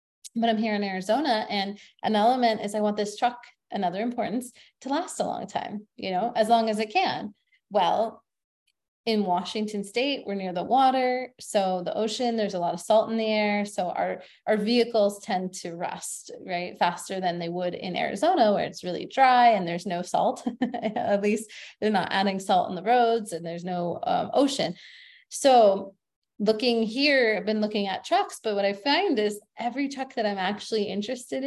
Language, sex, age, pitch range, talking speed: English, female, 20-39, 195-250 Hz, 195 wpm